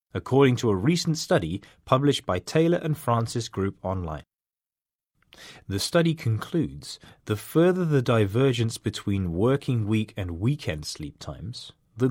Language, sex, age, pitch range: Chinese, male, 30-49, 100-140 Hz